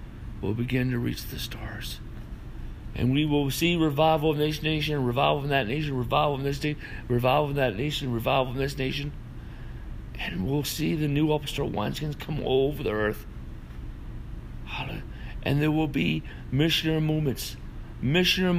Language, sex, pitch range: English, male, 120-150 Hz